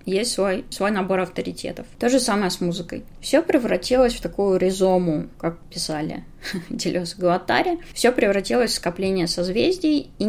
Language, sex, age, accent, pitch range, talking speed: Russian, female, 20-39, native, 180-250 Hz, 145 wpm